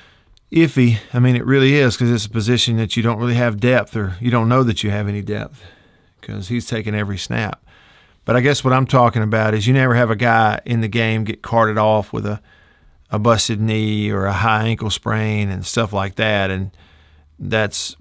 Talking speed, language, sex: 215 wpm, English, male